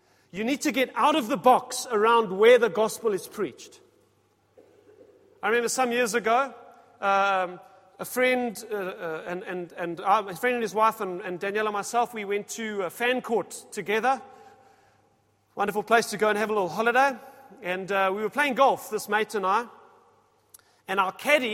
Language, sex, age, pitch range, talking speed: English, male, 40-59, 195-270 Hz, 185 wpm